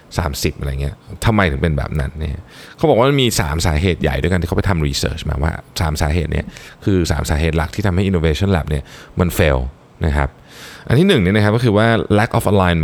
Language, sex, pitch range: Thai, male, 80-120 Hz